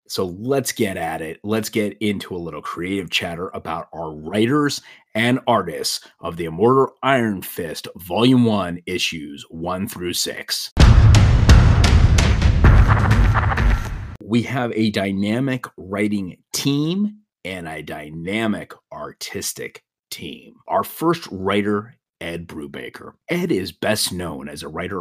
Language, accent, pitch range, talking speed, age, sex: English, American, 95-125 Hz, 120 wpm, 30-49, male